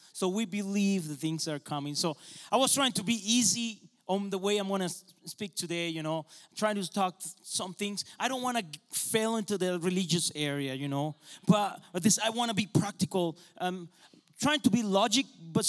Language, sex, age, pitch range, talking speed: English, male, 30-49, 165-225 Hz, 195 wpm